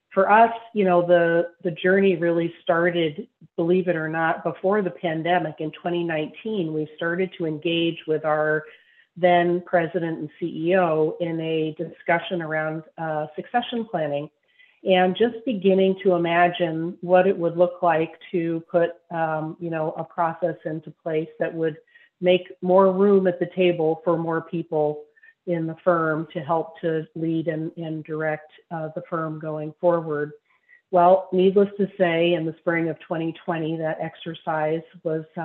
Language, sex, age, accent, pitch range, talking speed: English, female, 40-59, American, 155-180 Hz, 155 wpm